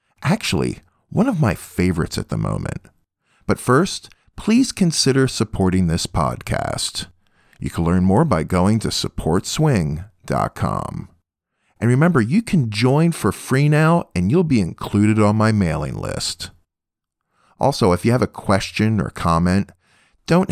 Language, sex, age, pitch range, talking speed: English, male, 40-59, 90-125 Hz, 140 wpm